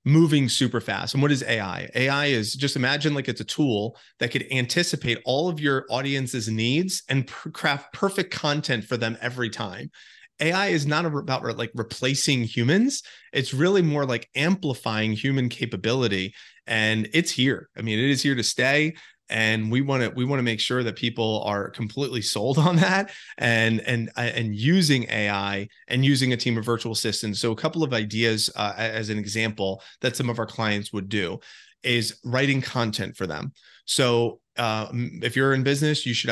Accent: American